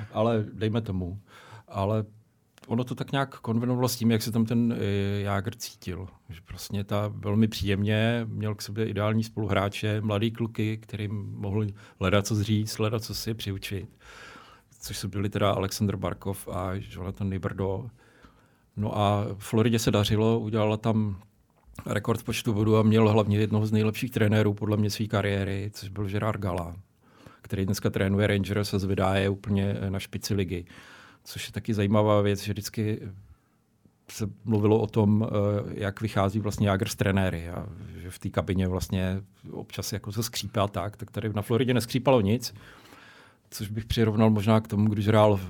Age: 40-59